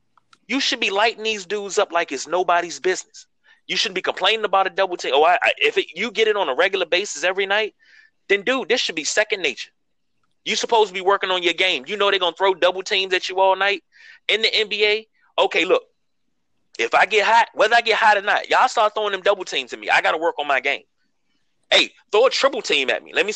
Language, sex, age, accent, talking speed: English, male, 30-49, American, 255 wpm